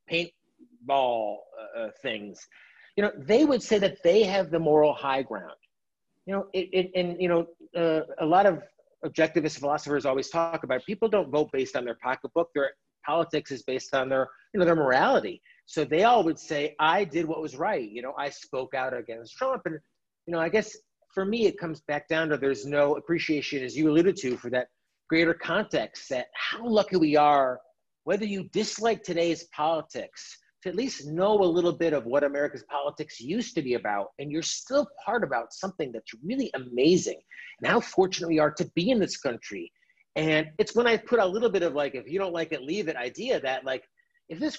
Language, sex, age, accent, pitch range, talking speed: English, male, 40-59, American, 145-200 Hz, 205 wpm